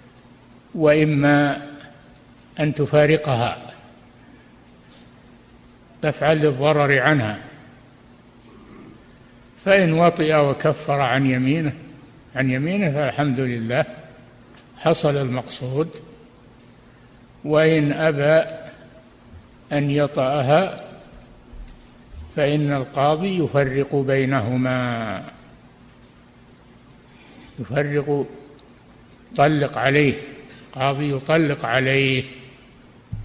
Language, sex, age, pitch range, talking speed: Arabic, male, 60-79, 130-150 Hz, 55 wpm